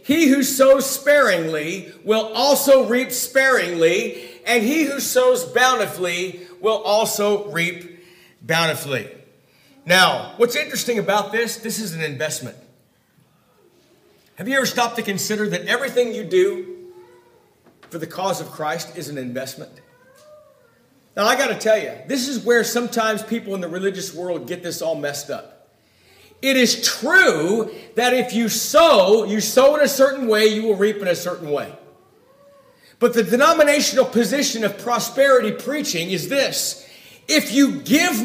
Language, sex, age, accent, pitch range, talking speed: English, male, 50-69, American, 200-275 Hz, 150 wpm